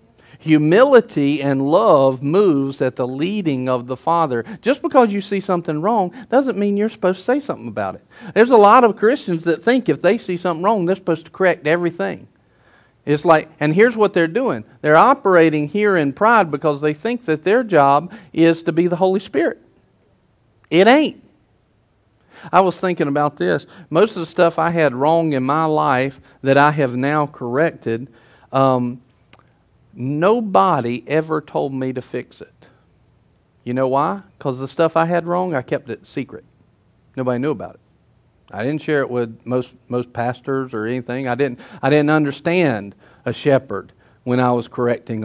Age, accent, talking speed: 50-69, American, 180 wpm